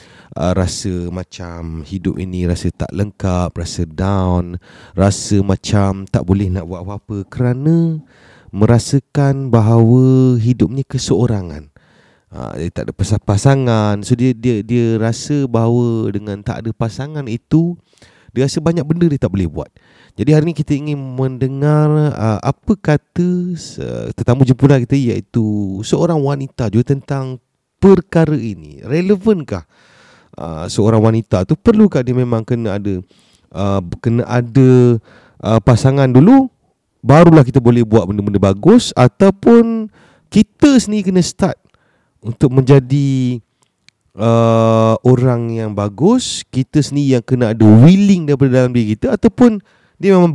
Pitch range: 105-150 Hz